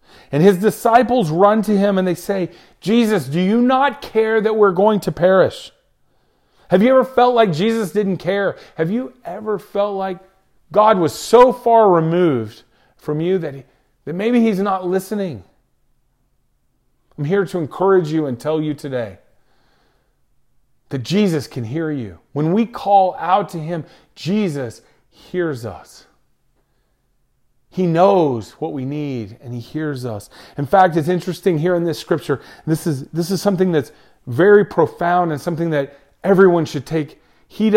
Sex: male